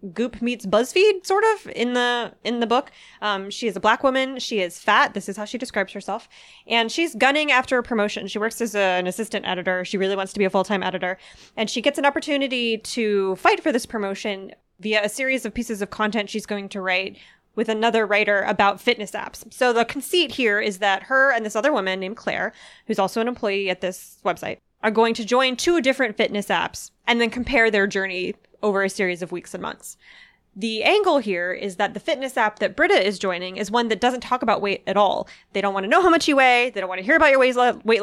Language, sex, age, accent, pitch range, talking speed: English, female, 20-39, American, 195-245 Hz, 240 wpm